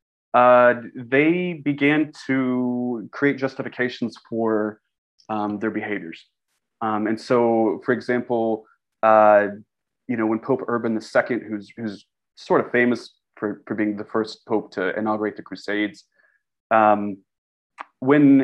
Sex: male